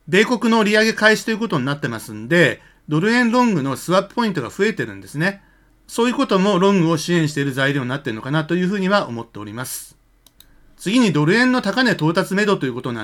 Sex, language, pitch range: male, Japanese, 150-200 Hz